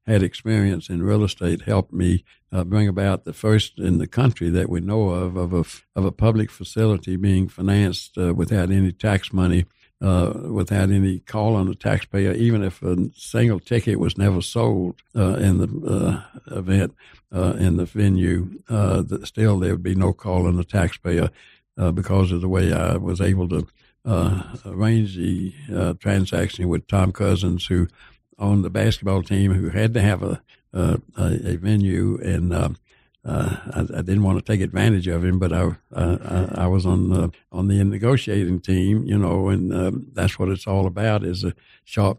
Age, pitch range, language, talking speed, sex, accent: 60-79, 90-105 Hz, English, 190 wpm, male, American